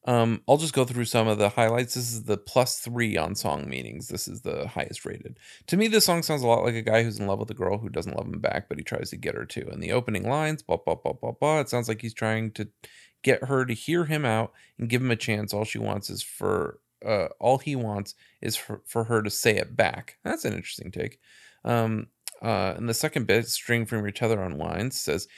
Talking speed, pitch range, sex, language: 260 wpm, 110-140 Hz, male, English